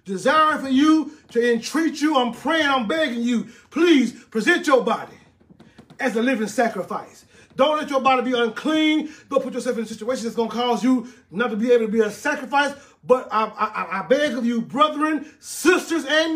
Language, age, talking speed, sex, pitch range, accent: English, 30-49, 200 wpm, male, 230-285 Hz, American